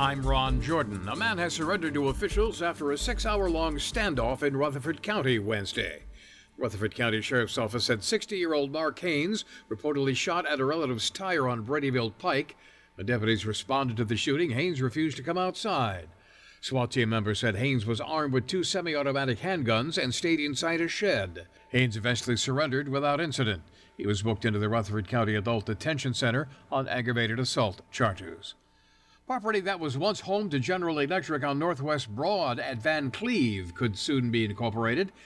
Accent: American